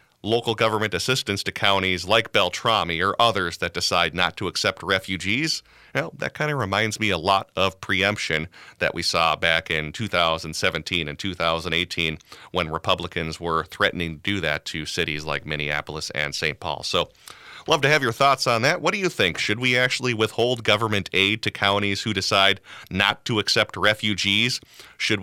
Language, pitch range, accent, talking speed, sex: English, 90-125 Hz, American, 175 wpm, male